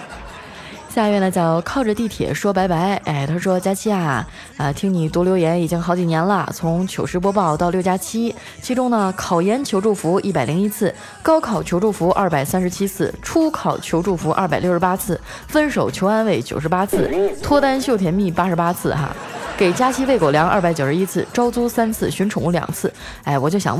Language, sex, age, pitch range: Chinese, female, 20-39, 170-220 Hz